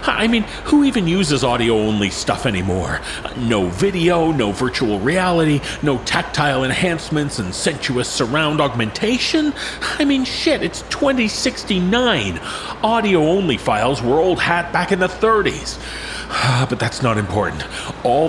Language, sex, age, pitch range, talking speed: English, male, 40-59, 115-175 Hz, 130 wpm